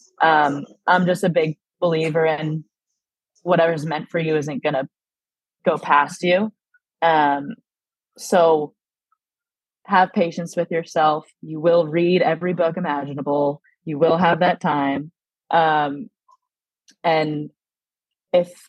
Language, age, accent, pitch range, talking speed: English, 20-39, American, 150-175 Hz, 120 wpm